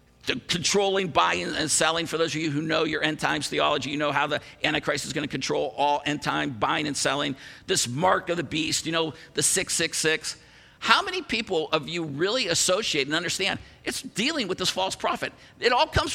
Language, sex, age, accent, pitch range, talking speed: English, male, 50-69, American, 150-210 Hz, 210 wpm